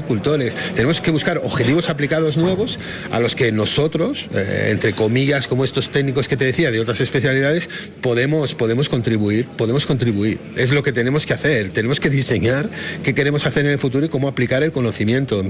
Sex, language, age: male, Spanish, 40-59